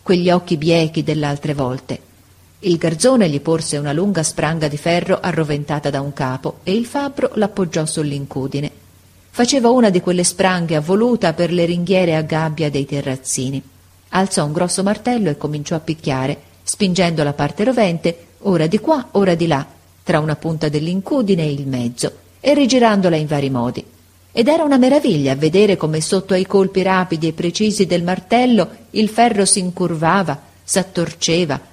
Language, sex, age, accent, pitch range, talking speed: Italian, female, 40-59, native, 145-200 Hz, 160 wpm